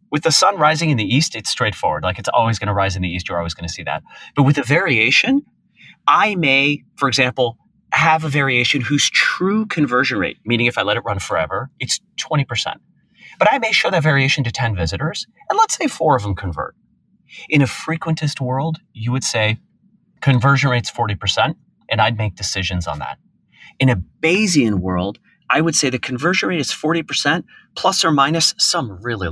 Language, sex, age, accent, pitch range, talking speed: English, male, 30-49, American, 115-160 Hz, 200 wpm